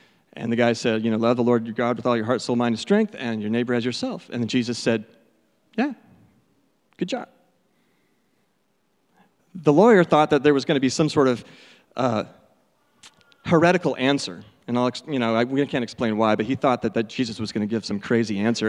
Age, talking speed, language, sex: 30-49, 220 wpm, English, male